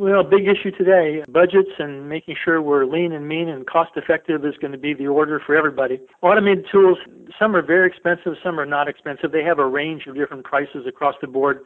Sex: male